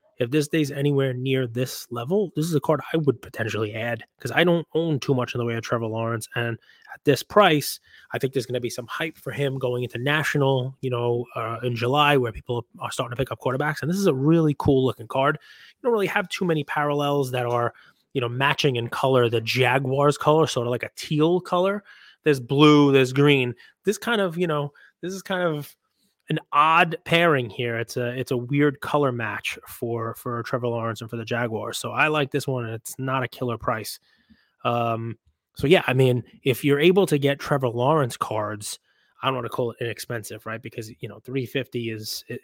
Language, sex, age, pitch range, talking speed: English, male, 20-39, 120-150 Hz, 220 wpm